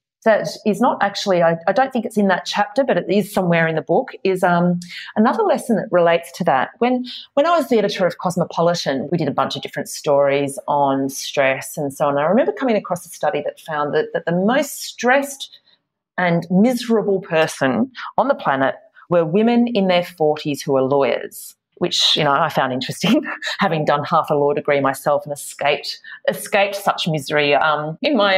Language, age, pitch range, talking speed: English, 40-59, 150-210 Hz, 200 wpm